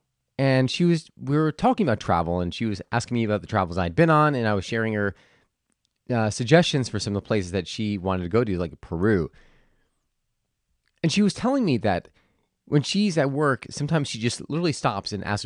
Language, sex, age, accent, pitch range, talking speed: English, male, 30-49, American, 100-145 Hz, 215 wpm